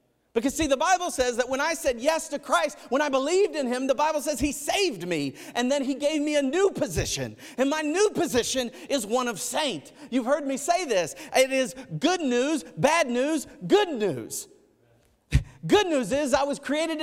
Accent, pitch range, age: American, 215-300 Hz, 40-59